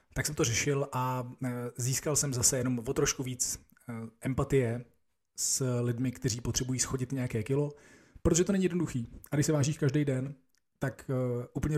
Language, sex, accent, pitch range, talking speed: Czech, male, native, 120-145 Hz, 165 wpm